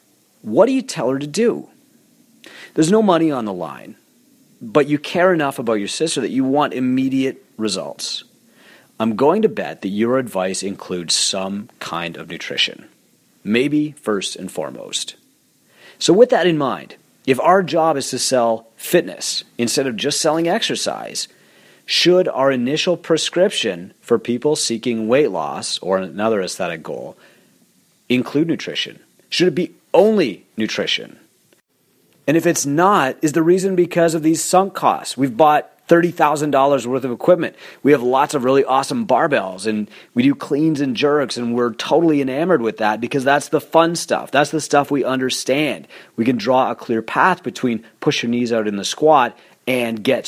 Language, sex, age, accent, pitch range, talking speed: English, male, 40-59, American, 120-165 Hz, 170 wpm